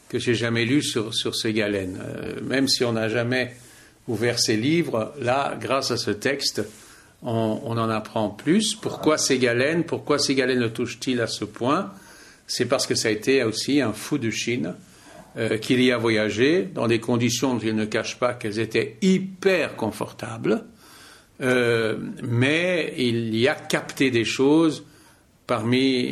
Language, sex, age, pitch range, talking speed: French, male, 60-79, 110-135 Hz, 170 wpm